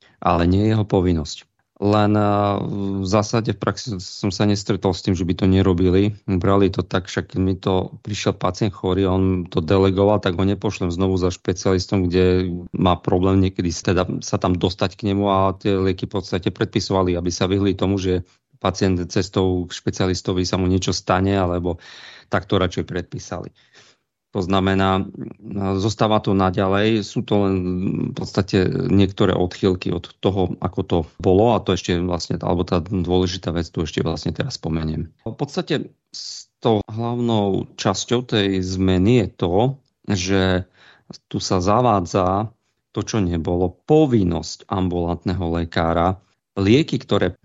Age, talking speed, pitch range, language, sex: 40-59, 155 wpm, 90-105 Hz, Slovak, male